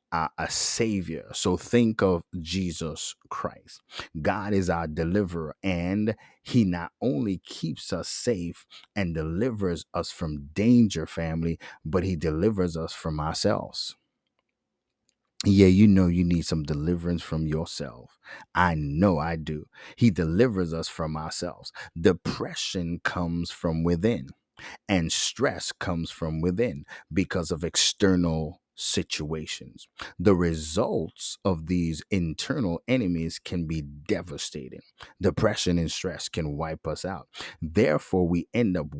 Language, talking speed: English, 125 wpm